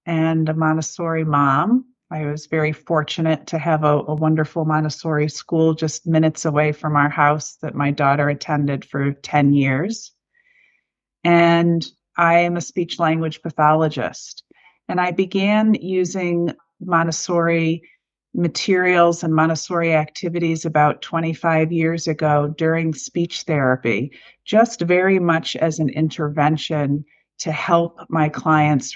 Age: 40-59